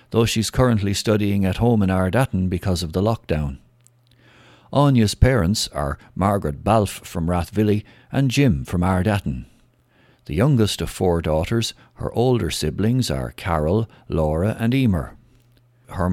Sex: male